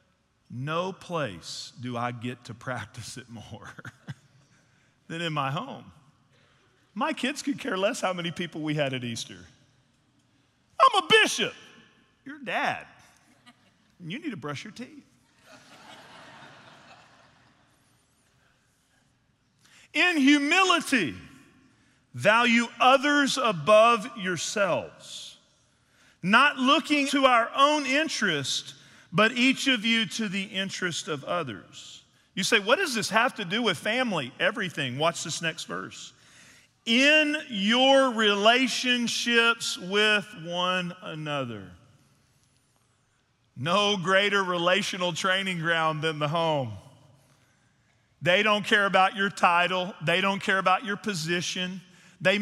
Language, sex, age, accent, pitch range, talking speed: English, male, 40-59, American, 140-230 Hz, 115 wpm